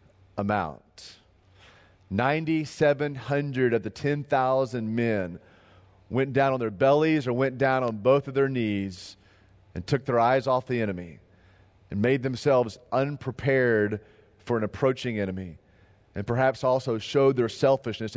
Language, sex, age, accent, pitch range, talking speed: English, male, 30-49, American, 100-140 Hz, 130 wpm